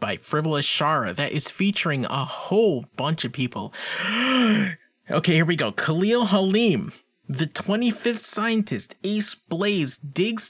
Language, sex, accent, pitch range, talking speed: English, male, American, 135-205 Hz, 130 wpm